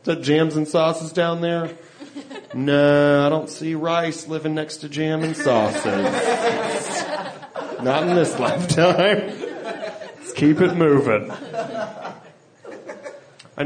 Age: 30-49